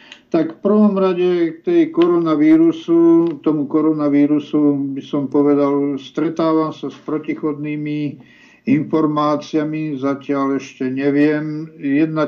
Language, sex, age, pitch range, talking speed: Czech, male, 60-79, 135-150 Hz, 100 wpm